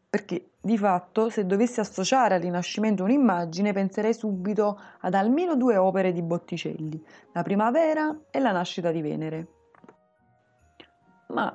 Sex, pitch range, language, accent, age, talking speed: female, 180-230 Hz, Italian, native, 20-39, 130 wpm